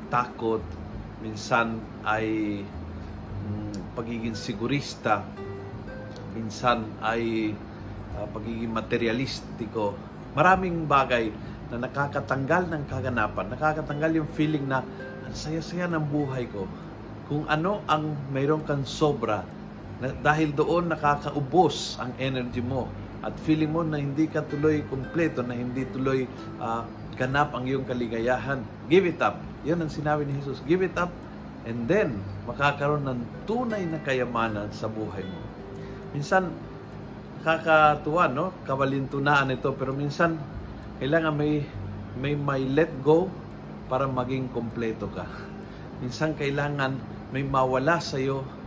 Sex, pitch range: male, 110-150 Hz